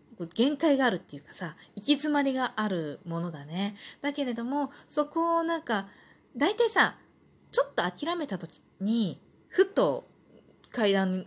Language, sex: Japanese, female